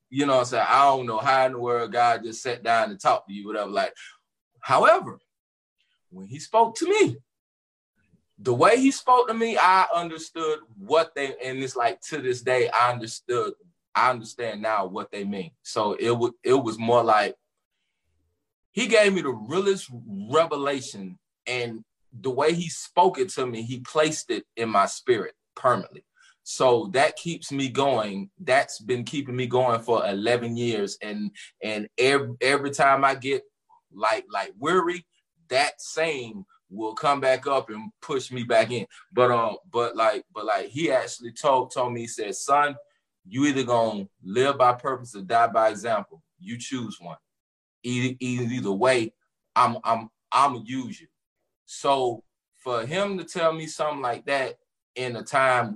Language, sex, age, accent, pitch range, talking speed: English, male, 20-39, American, 115-170 Hz, 175 wpm